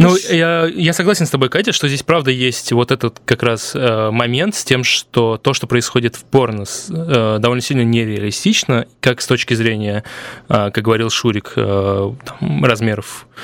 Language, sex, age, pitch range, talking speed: Russian, male, 20-39, 110-130 Hz, 180 wpm